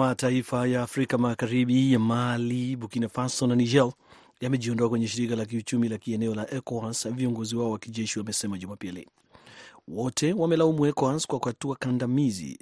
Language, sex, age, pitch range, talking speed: Swahili, male, 40-59, 110-130 Hz, 150 wpm